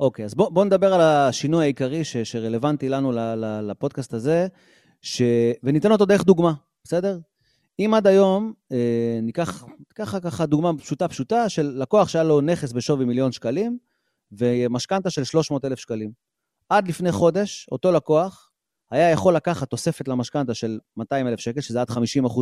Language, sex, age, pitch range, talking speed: Hebrew, male, 30-49, 130-180 Hz, 145 wpm